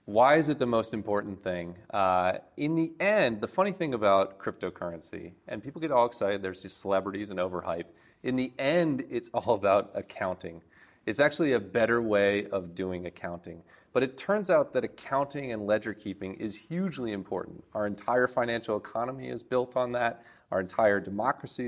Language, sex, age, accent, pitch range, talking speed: English, male, 30-49, American, 95-125 Hz, 175 wpm